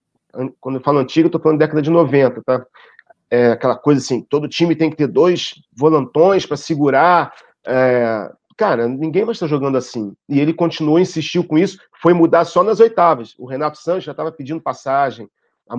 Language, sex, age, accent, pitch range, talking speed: Portuguese, male, 40-59, Brazilian, 140-170 Hz, 195 wpm